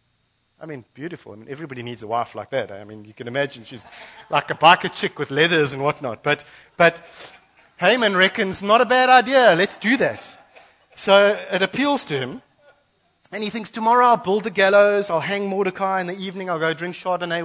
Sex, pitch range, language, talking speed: male, 115-170 Hz, English, 205 wpm